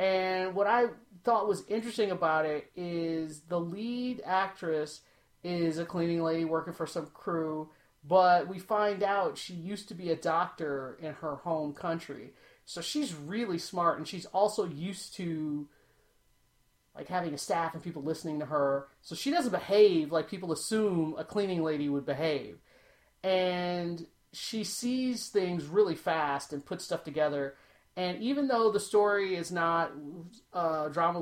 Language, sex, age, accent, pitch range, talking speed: English, male, 30-49, American, 160-205 Hz, 160 wpm